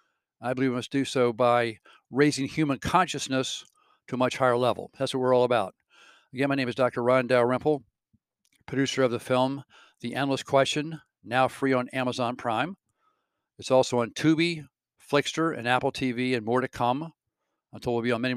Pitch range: 120-140 Hz